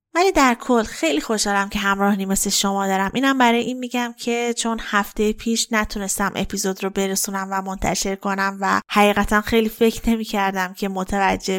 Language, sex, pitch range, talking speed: Persian, female, 195-220 Hz, 165 wpm